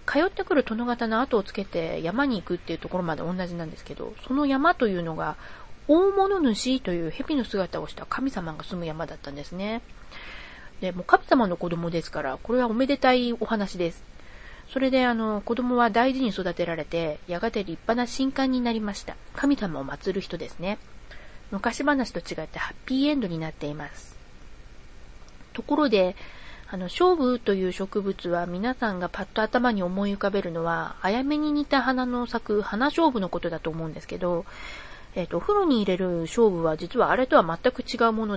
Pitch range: 170-255 Hz